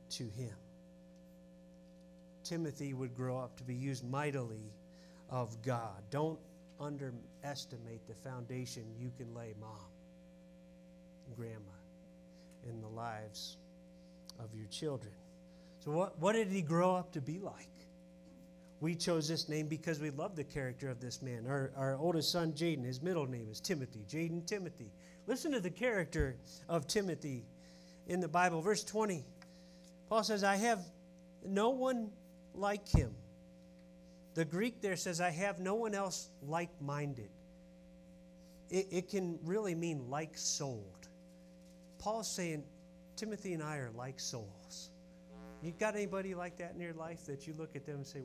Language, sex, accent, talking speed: English, male, American, 150 wpm